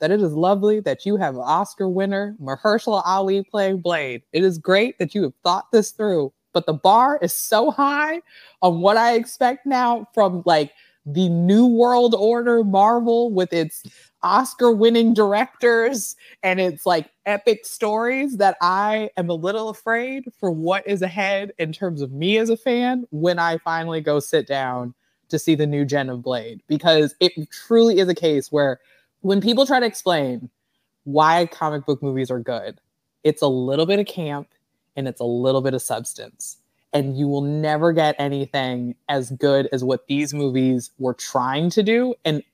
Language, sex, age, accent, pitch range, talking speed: English, female, 20-39, American, 140-210 Hz, 180 wpm